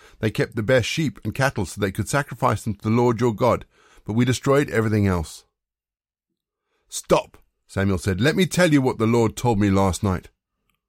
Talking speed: 200 wpm